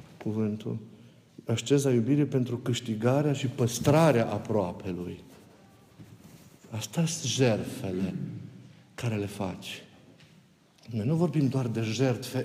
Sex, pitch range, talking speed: male, 120-190 Hz, 95 wpm